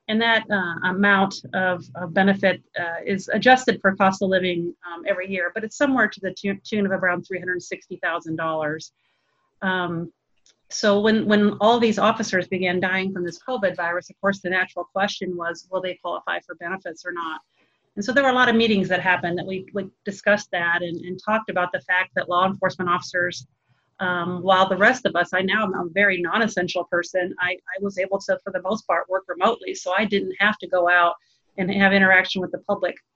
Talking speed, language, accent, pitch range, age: 210 wpm, English, American, 180-200 Hz, 40-59